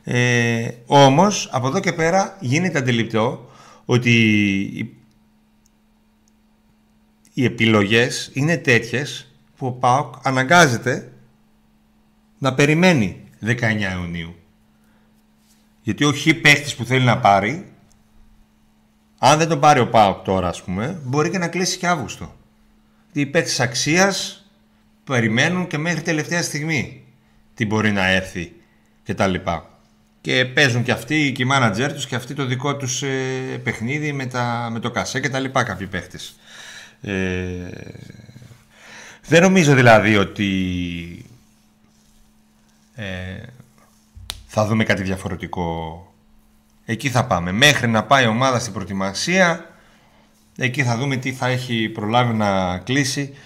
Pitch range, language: 95-135 Hz, Greek